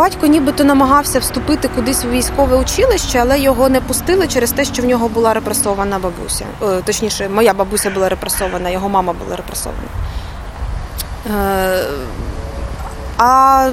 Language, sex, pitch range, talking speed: Ukrainian, female, 215-305 Hz, 130 wpm